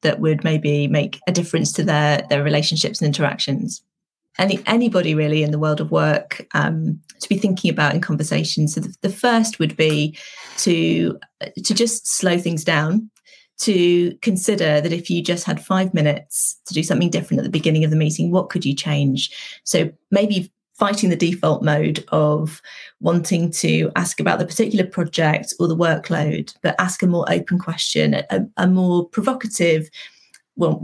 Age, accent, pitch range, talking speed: 30-49, British, 160-195 Hz, 175 wpm